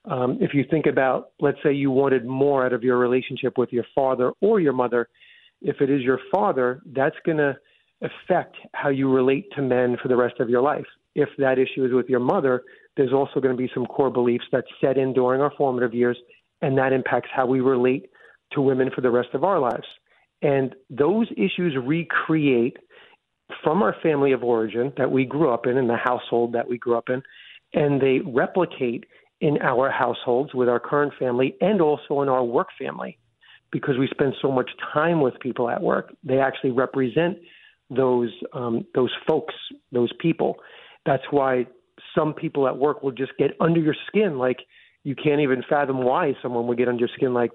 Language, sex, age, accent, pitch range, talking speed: English, male, 40-59, American, 125-145 Hz, 200 wpm